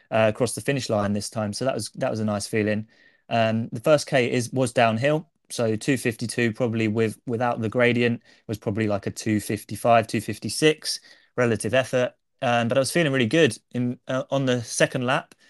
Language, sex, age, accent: English, male, 20-39, British